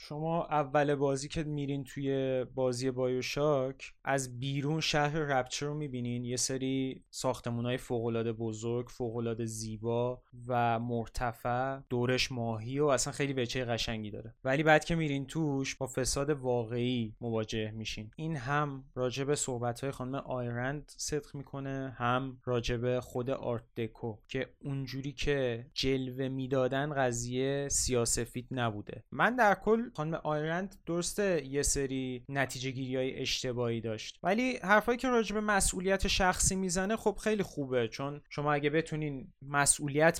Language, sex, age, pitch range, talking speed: Persian, male, 20-39, 125-150 Hz, 135 wpm